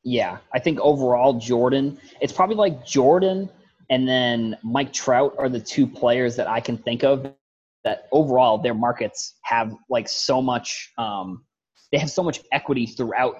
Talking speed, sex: 160 wpm, male